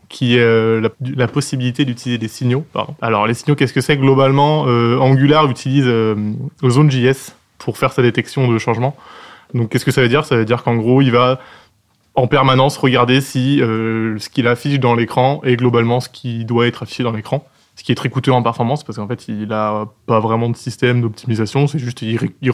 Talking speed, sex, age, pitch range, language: 215 wpm, male, 20-39, 115-130 Hz, French